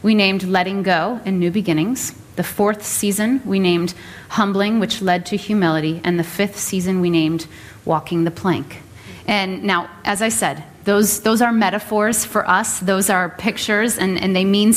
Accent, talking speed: American, 180 wpm